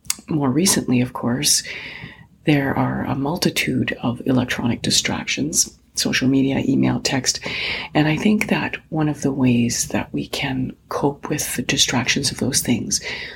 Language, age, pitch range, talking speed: English, 40-59, 125-150 Hz, 150 wpm